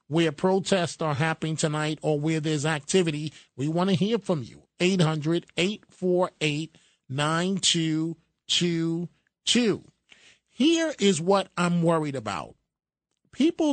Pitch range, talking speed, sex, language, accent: 155-190 Hz, 100 wpm, male, English, American